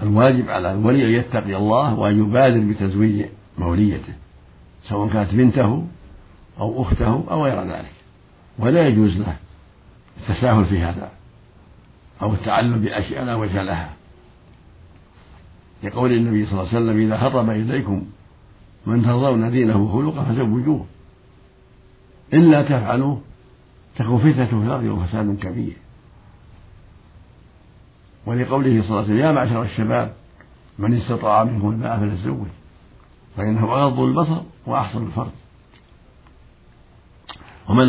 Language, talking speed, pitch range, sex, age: Arabic, 105 wpm, 95-120 Hz, male, 60-79